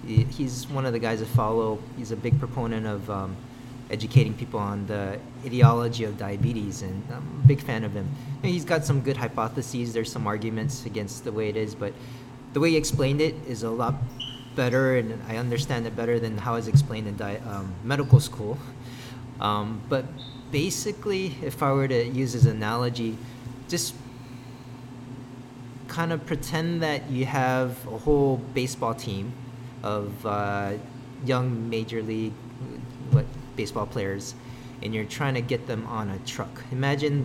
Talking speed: 165 wpm